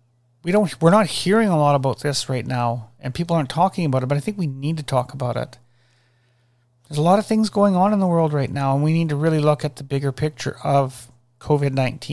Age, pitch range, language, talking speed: 40-59, 120-145 Hz, English, 245 wpm